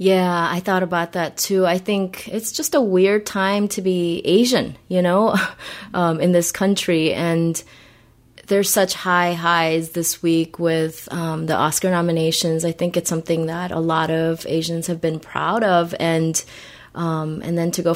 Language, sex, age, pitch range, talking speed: English, female, 20-39, 160-185 Hz, 175 wpm